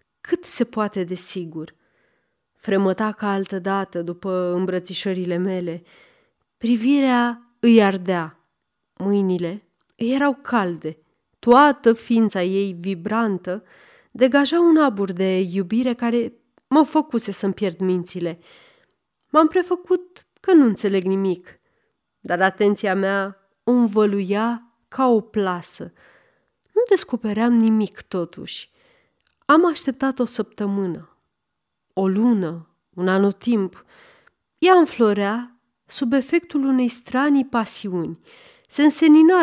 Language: Romanian